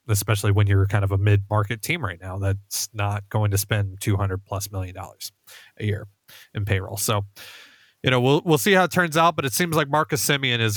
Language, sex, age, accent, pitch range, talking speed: English, male, 30-49, American, 110-160 Hz, 230 wpm